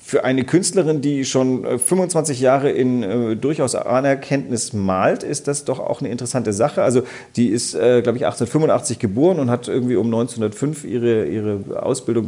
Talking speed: 170 wpm